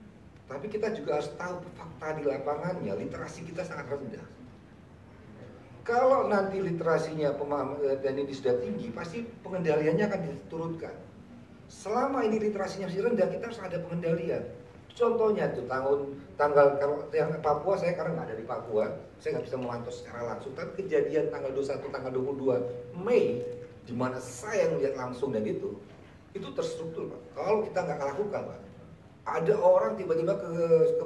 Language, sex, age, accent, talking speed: Indonesian, male, 40-59, native, 150 wpm